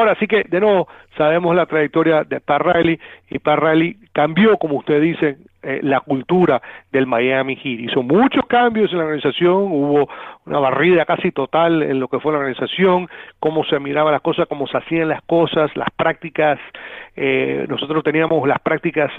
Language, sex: Spanish, male